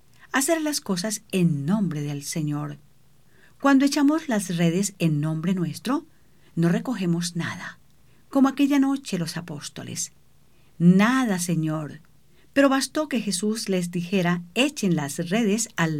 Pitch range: 165-230 Hz